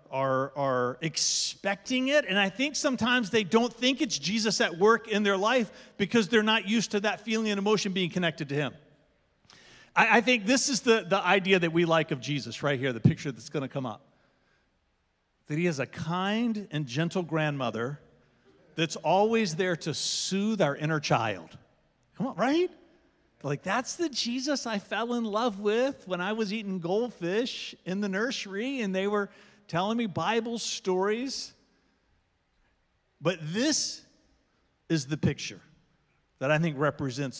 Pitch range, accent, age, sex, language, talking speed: 150-230 Hz, American, 40-59, male, English, 170 wpm